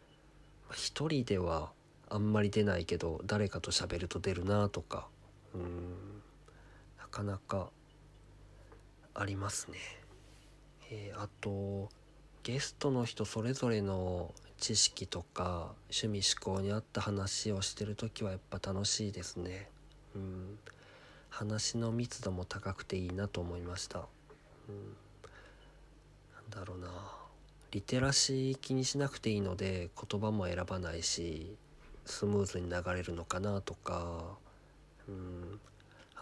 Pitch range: 90-110 Hz